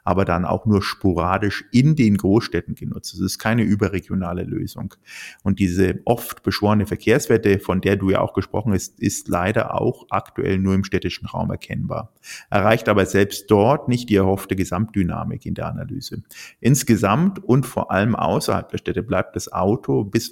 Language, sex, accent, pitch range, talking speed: German, male, German, 95-110 Hz, 170 wpm